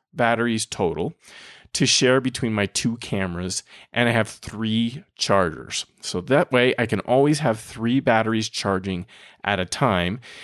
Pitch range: 105-130 Hz